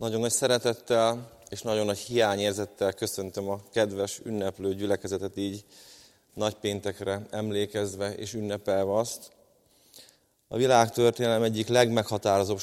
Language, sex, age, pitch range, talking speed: Hungarian, male, 30-49, 105-120 Hz, 110 wpm